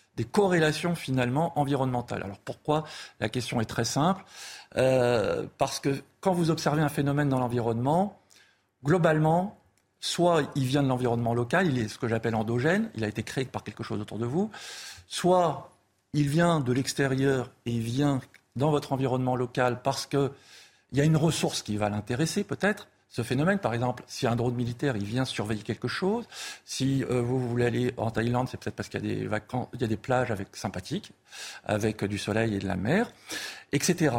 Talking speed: 190 wpm